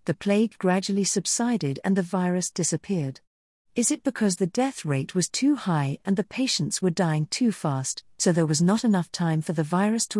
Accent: British